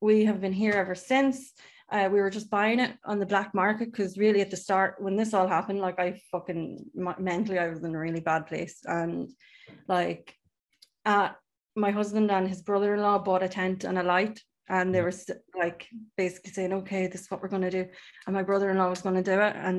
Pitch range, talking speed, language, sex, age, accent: 180-210 Hz, 220 wpm, English, female, 20-39, Irish